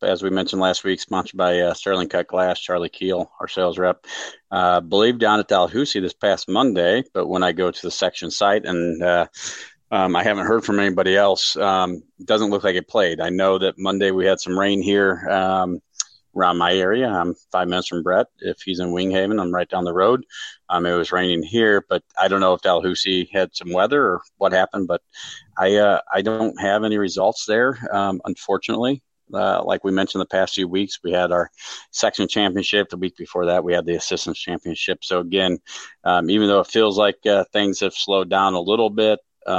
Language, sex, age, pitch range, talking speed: English, male, 40-59, 90-100 Hz, 215 wpm